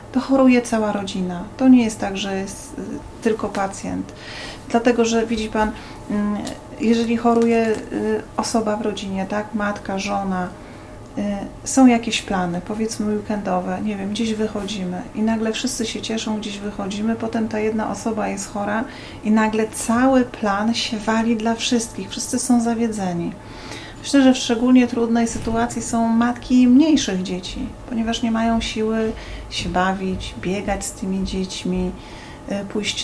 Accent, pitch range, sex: native, 205-230 Hz, female